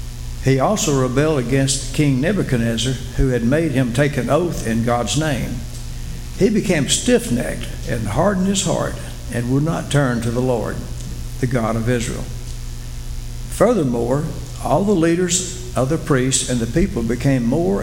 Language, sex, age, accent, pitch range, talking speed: English, male, 60-79, American, 115-140 Hz, 155 wpm